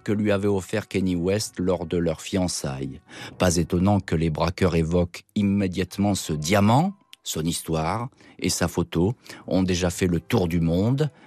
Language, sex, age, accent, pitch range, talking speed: French, male, 40-59, French, 85-115 Hz, 165 wpm